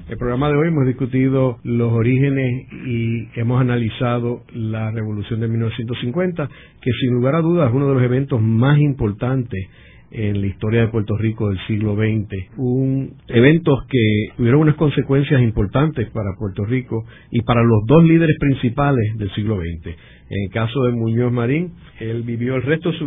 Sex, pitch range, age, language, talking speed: male, 110-130 Hz, 50-69, Spanish, 170 wpm